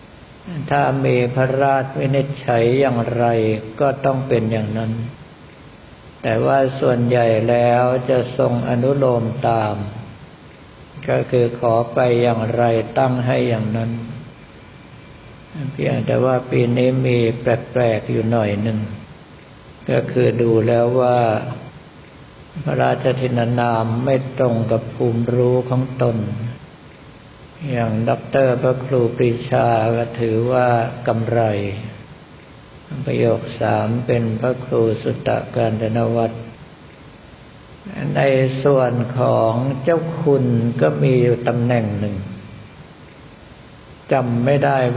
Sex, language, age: male, Thai, 60-79